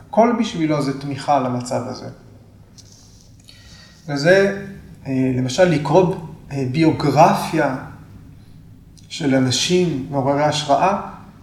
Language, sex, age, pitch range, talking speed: Hebrew, male, 30-49, 120-155 Hz, 75 wpm